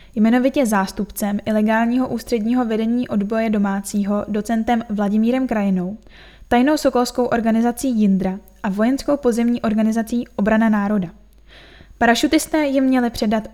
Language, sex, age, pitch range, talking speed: Czech, female, 10-29, 210-250 Hz, 105 wpm